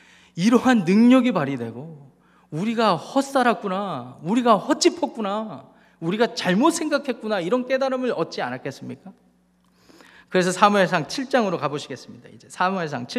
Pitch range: 145-210 Hz